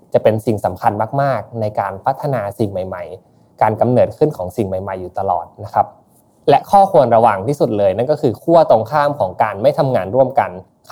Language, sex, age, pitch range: Thai, male, 20-39, 100-140 Hz